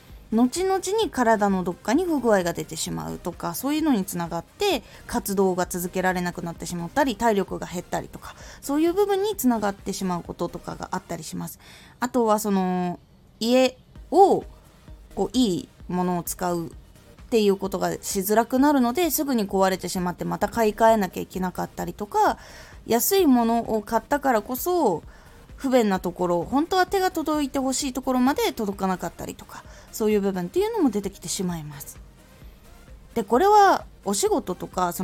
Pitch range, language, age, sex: 180-295 Hz, Japanese, 20-39, female